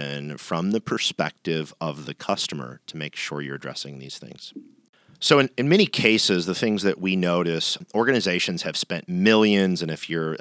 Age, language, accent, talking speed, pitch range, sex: 40-59, English, American, 175 wpm, 75-95 Hz, male